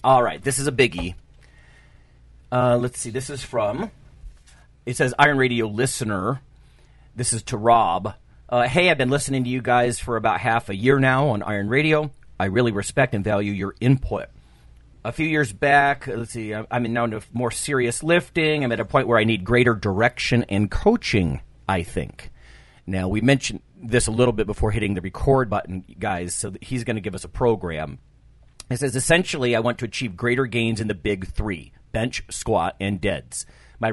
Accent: American